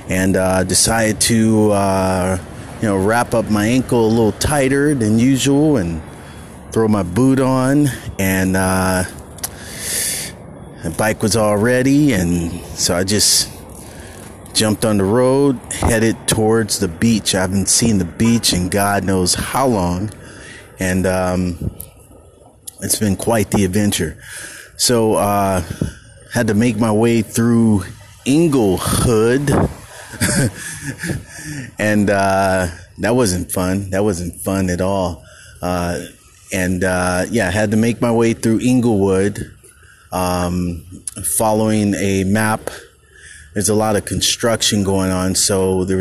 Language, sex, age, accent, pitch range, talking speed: English, male, 30-49, American, 90-110 Hz, 135 wpm